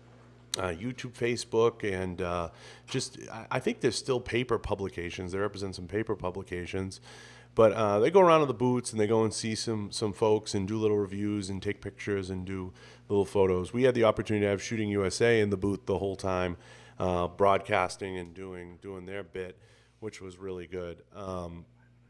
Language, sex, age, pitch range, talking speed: English, male, 30-49, 95-115 Hz, 190 wpm